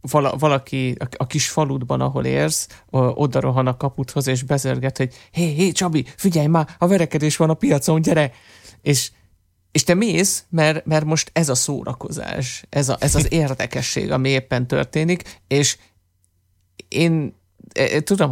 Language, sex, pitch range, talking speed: Hungarian, male, 120-145 Hz, 150 wpm